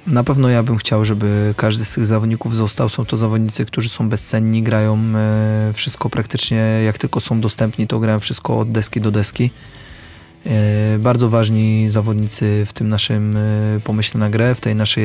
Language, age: Polish, 20-39